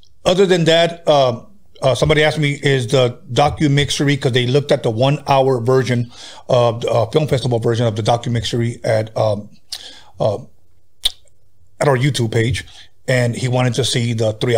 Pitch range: 115-135 Hz